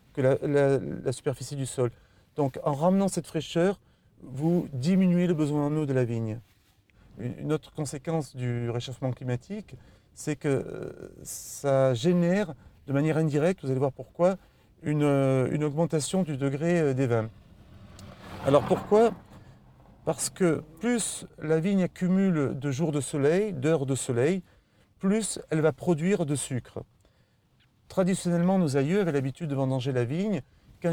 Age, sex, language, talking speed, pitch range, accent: 40-59, male, French, 145 wpm, 130-175 Hz, French